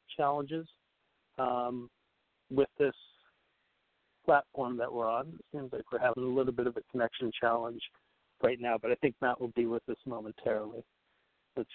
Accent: American